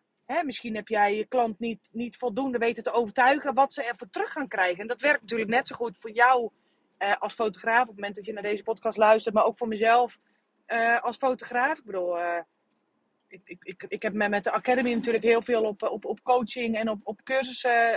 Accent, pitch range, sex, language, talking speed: Dutch, 205-255 Hz, female, Dutch, 230 wpm